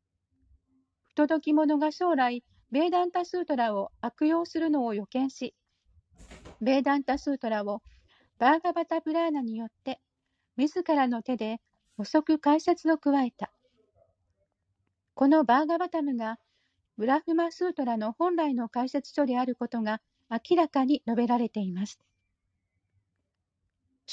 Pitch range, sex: 220-315 Hz, female